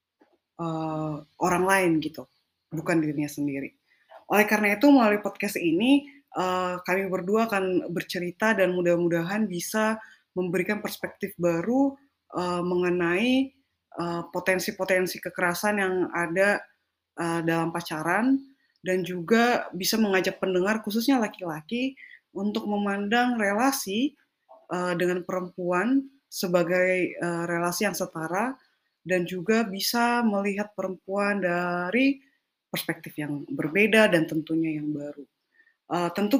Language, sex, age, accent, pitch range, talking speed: Indonesian, female, 20-39, native, 170-220 Hz, 110 wpm